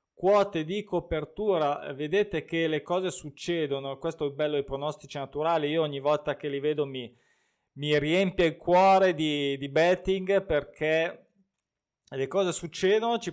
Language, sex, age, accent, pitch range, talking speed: Italian, male, 20-39, native, 135-175 Hz, 150 wpm